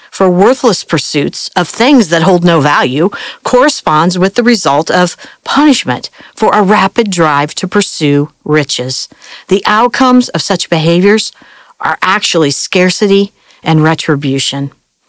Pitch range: 165-230 Hz